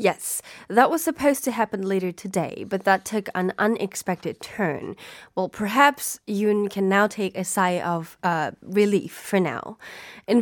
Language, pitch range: Korean, 190-240 Hz